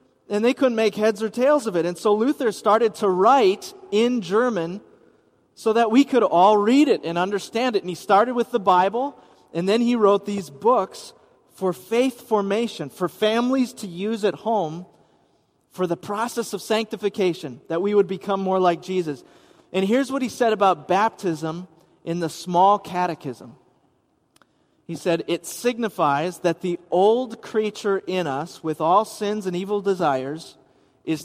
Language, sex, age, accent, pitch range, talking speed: English, male, 30-49, American, 160-215 Hz, 170 wpm